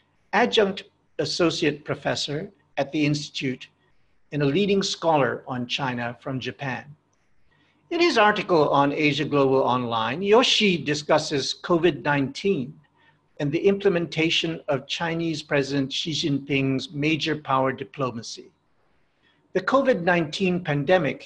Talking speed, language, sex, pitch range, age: 105 wpm, English, male, 140-180 Hz, 60-79